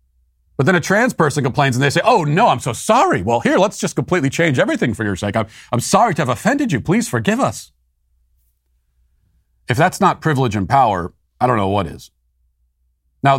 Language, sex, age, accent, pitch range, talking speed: English, male, 40-59, American, 90-130 Hz, 205 wpm